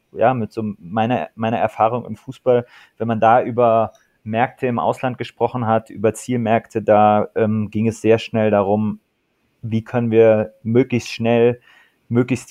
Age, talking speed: 20-39, 155 wpm